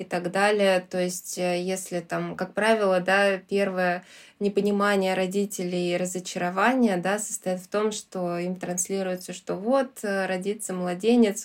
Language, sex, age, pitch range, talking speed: Russian, female, 20-39, 185-205 Hz, 135 wpm